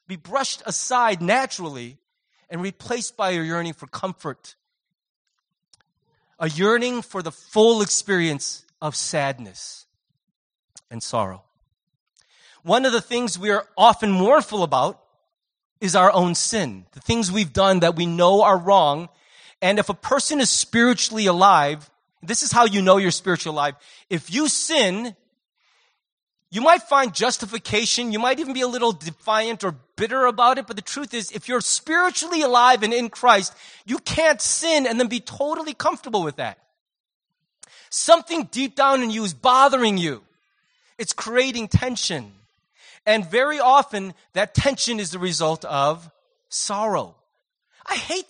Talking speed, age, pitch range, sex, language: 150 wpm, 30-49, 180-255 Hz, male, English